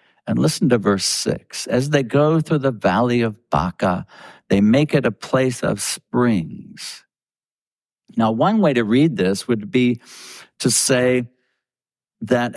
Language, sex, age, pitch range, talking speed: English, male, 50-69, 100-140 Hz, 150 wpm